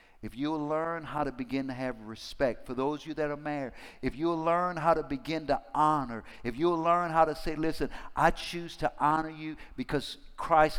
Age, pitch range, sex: 50-69, 155-205 Hz, male